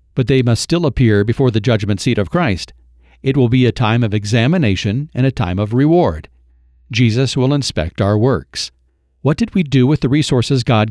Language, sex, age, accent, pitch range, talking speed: English, male, 50-69, American, 105-135 Hz, 200 wpm